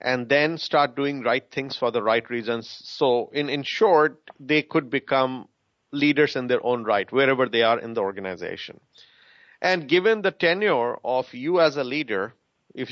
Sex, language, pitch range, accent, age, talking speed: male, English, 130-165 Hz, Indian, 40-59, 175 wpm